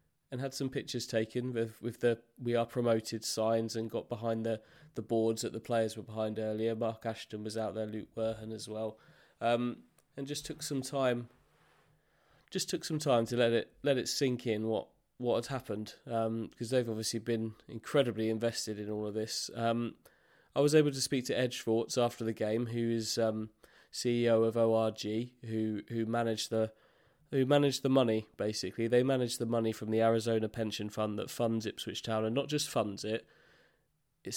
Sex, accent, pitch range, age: male, British, 110-120 Hz, 20-39